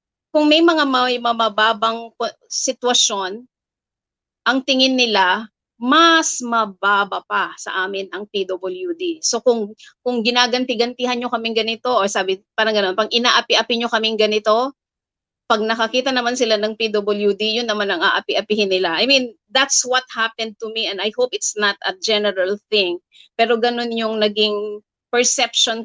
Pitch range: 210-250 Hz